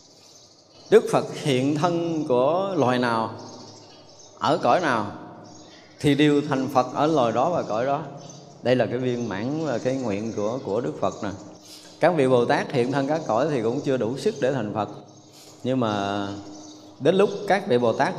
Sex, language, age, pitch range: male, Vietnamese, 20-39, 115-160 Hz